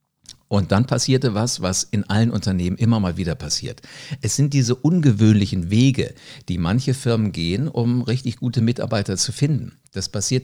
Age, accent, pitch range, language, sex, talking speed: 50-69, German, 100-135 Hz, German, male, 165 wpm